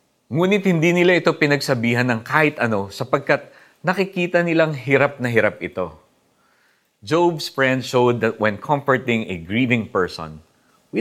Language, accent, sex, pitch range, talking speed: Filipino, native, male, 105-140 Hz, 135 wpm